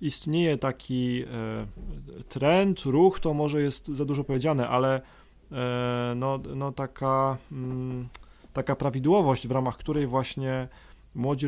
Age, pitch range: 30-49, 115-145 Hz